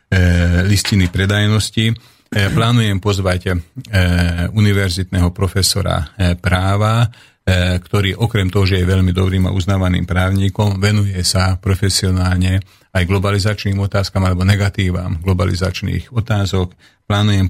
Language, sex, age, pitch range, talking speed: Slovak, male, 40-59, 90-100 Hz, 95 wpm